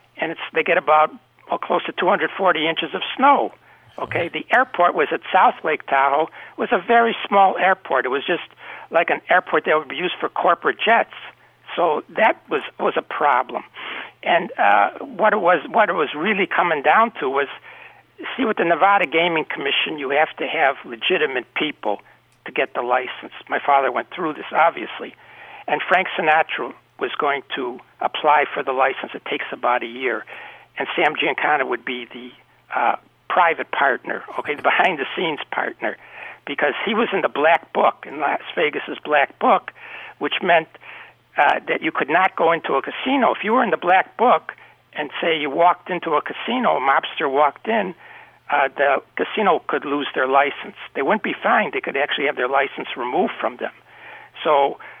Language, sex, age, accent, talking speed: English, male, 60-79, American, 185 wpm